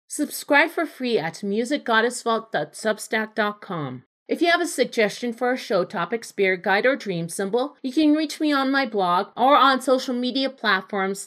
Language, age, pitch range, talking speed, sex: English, 40-59, 210-265 Hz, 165 wpm, female